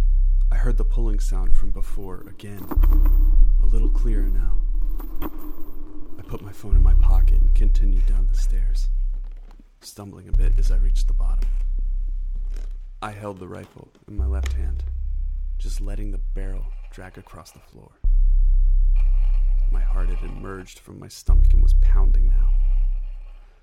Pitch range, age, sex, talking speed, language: 65-100 Hz, 20-39, male, 150 wpm, English